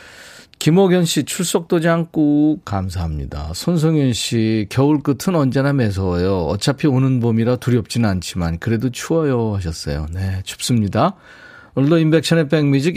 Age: 40-59